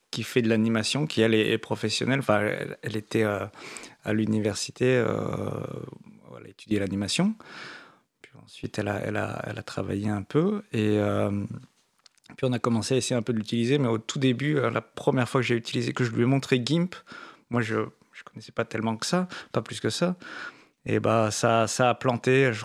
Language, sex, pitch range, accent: French, male, 110-130 Hz, French